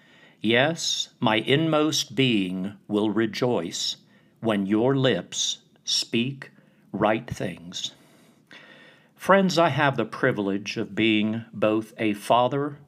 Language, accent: English, American